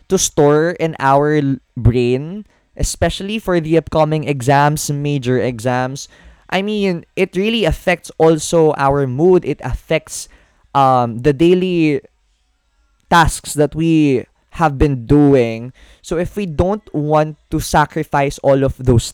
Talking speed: 130 wpm